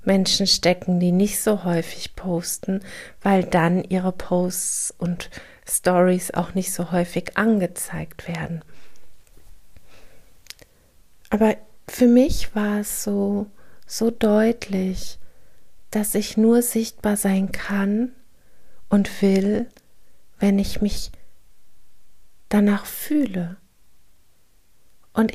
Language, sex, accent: German, female, German